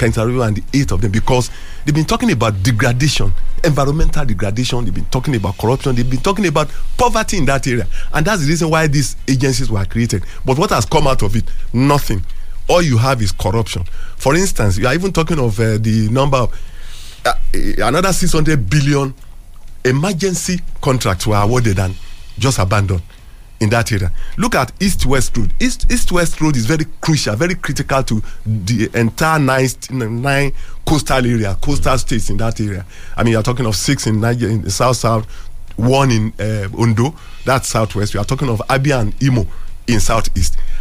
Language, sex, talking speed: English, male, 185 wpm